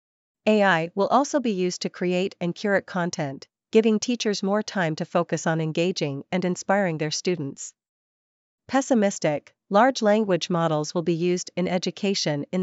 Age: 40-59